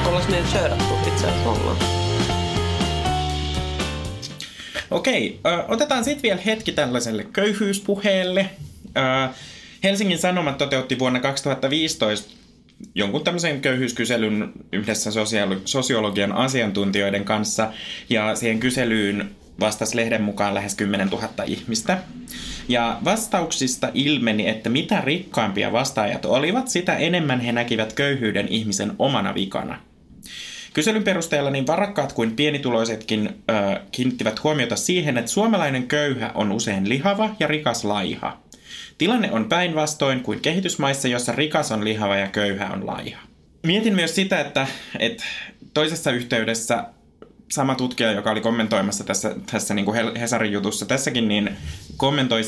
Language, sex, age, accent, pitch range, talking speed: Finnish, male, 20-39, native, 105-150 Hz, 110 wpm